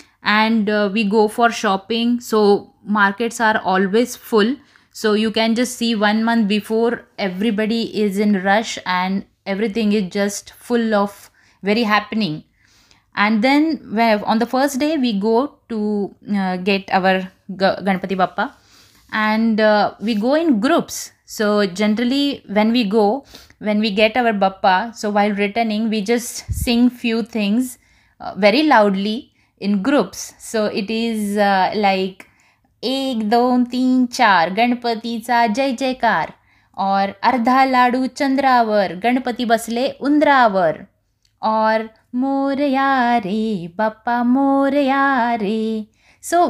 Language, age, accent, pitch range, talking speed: Bengali, 20-39, native, 205-245 Hz, 105 wpm